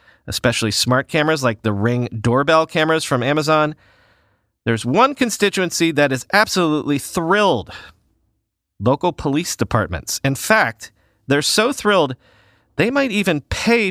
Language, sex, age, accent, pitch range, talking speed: English, male, 40-59, American, 125-180 Hz, 125 wpm